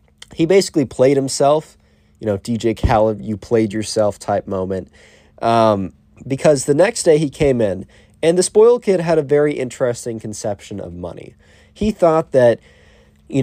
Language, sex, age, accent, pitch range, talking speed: English, male, 20-39, American, 100-145 Hz, 160 wpm